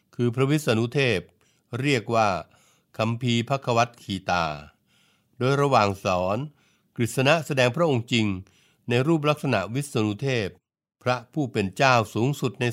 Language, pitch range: Thai, 100-130 Hz